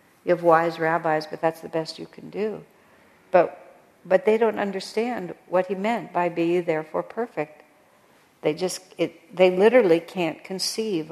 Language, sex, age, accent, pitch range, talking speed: English, female, 60-79, American, 160-195 Hz, 160 wpm